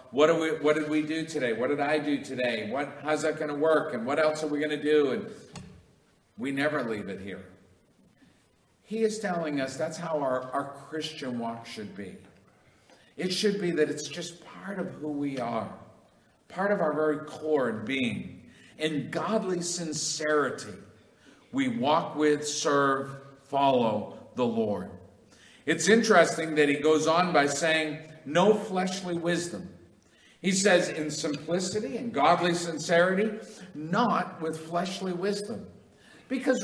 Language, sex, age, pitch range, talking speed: English, male, 50-69, 150-185 Hz, 155 wpm